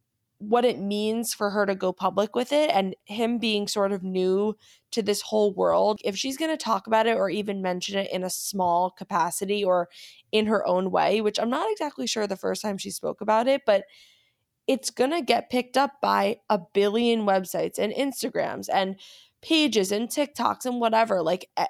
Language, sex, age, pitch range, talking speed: English, female, 20-39, 190-240 Hz, 200 wpm